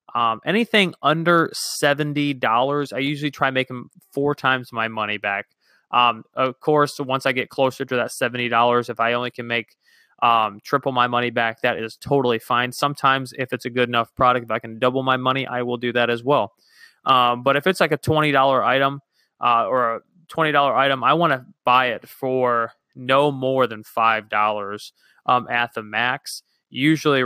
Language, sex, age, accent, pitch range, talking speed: English, male, 20-39, American, 120-135 Hz, 185 wpm